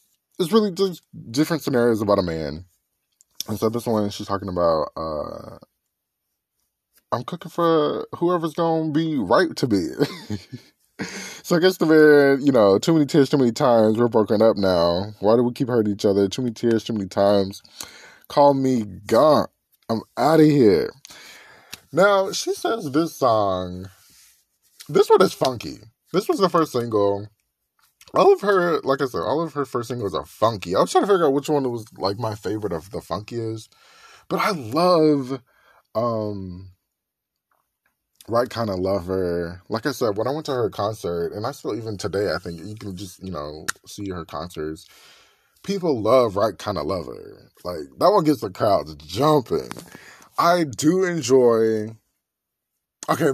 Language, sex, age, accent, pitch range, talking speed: English, male, 20-39, American, 100-155 Hz, 175 wpm